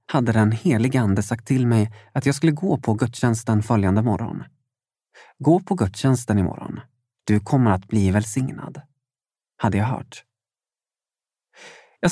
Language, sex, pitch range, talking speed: Swedish, male, 115-155 Hz, 140 wpm